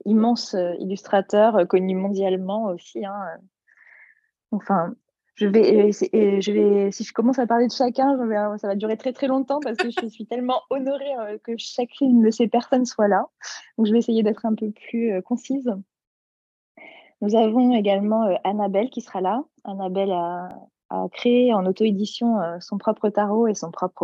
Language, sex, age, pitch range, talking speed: French, female, 20-39, 185-230 Hz, 190 wpm